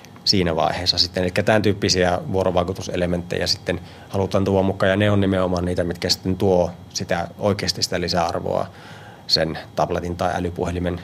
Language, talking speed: Finnish, 145 wpm